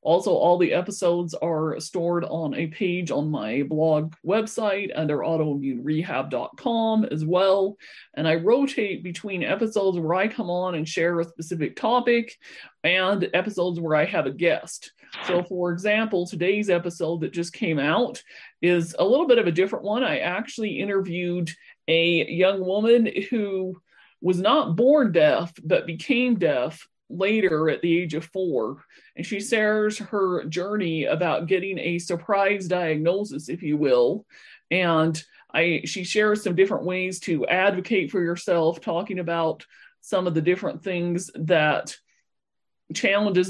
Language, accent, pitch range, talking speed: English, American, 165-195 Hz, 150 wpm